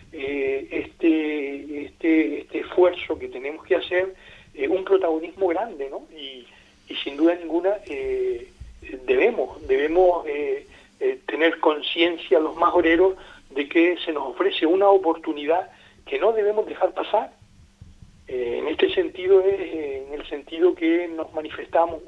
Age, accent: 40-59, Argentinian